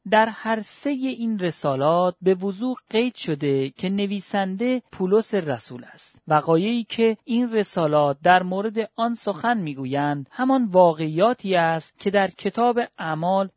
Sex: male